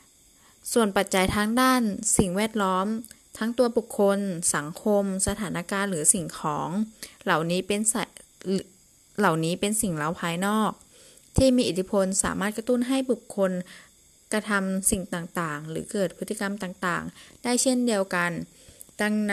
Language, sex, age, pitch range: Thai, female, 20-39, 180-230 Hz